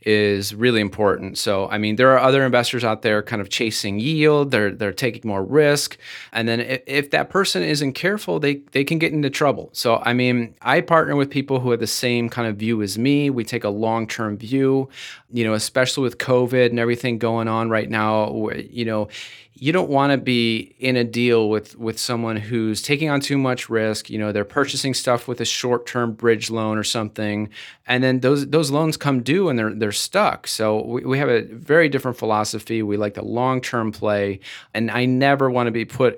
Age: 30-49